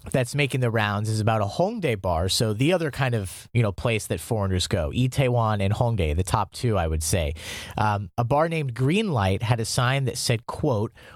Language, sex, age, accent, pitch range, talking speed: English, male, 30-49, American, 110-140 Hz, 220 wpm